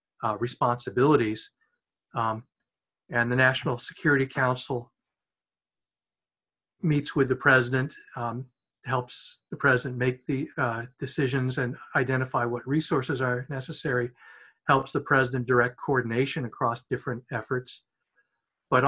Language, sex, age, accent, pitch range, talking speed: English, male, 50-69, American, 125-145 Hz, 110 wpm